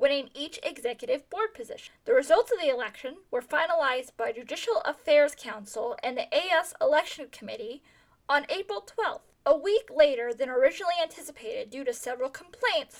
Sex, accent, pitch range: female, American, 245-365 Hz